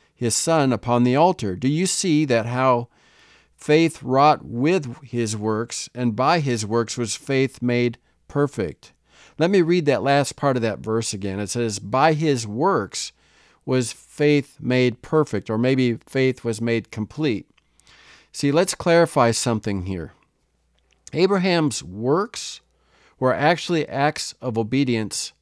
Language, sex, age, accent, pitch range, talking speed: English, male, 50-69, American, 110-150 Hz, 140 wpm